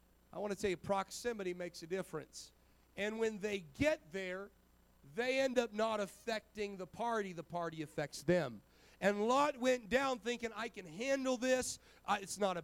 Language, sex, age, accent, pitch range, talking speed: English, male, 40-59, American, 150-200 Hz, 175 wpm